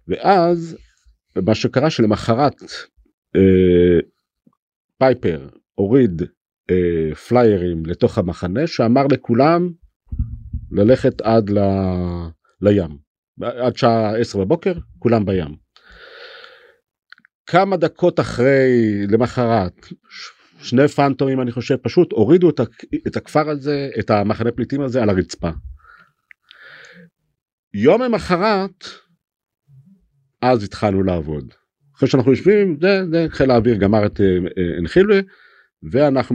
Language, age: Hebrew, 50-69